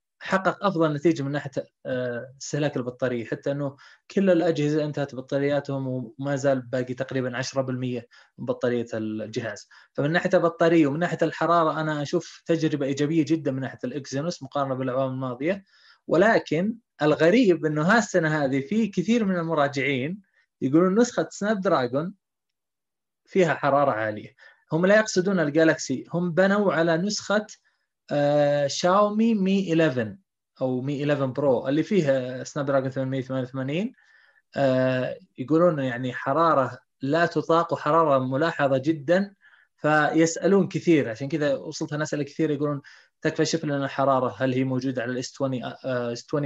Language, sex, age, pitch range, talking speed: Arabic, male, 20-39, 130-165 Hz, 135 wpm